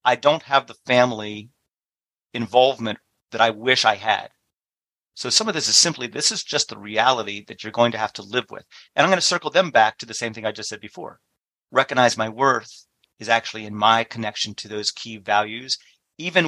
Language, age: English, 40-59